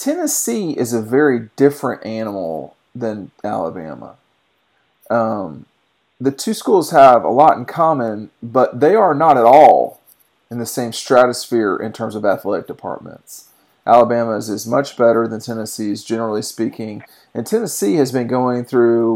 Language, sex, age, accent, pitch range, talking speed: English, male, 40-59, American, 110-135 Hz, 145 wpm